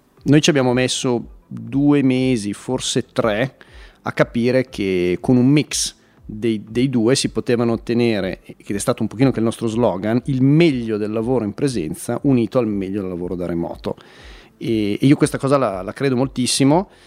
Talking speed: 175 wpm